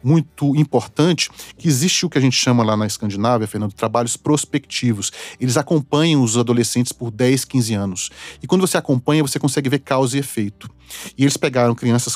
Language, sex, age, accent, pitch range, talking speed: Portuguese, male, 40-59, Brazilian, 110-145 Hz, 190 wpm